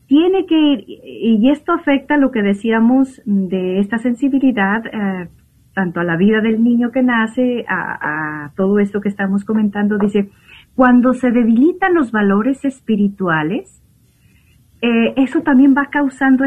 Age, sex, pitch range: 40-59, female, 185-250 Hz